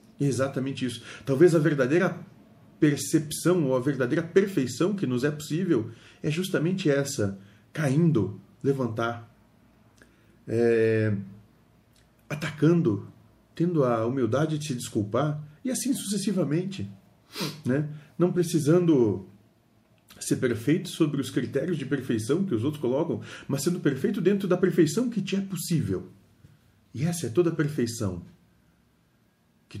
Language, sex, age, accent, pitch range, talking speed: Portuguese, male, 40-59, Brazilian, 100-145 Hz, 120 wpm